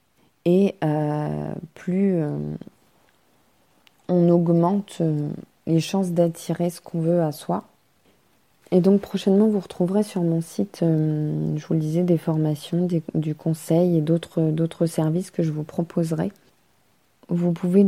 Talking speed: 140 wpm